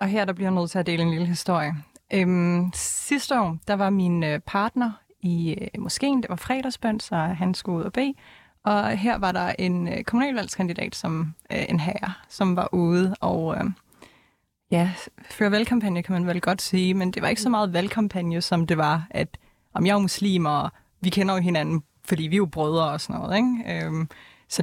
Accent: native